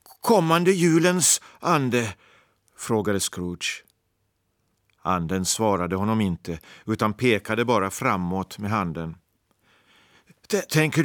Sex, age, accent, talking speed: male, 50-69, native, 85 wpm